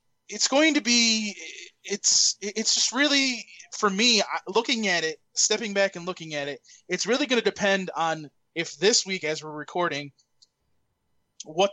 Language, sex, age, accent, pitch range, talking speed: English, male, 20-39, American, 150-220 Hz, 165 wpm